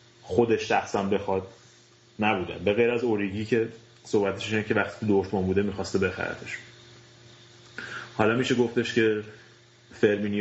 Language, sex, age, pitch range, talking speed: Persian, male, 30-49, 95-120 Hz, 120 wpm